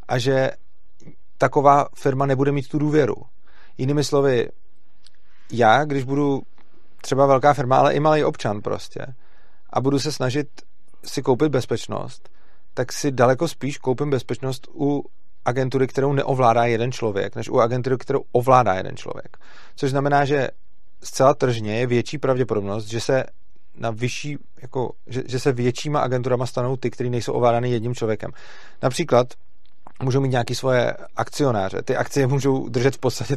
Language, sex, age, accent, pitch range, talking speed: Czech, male, 30-49, native, 125-140 Hz, 150 wpm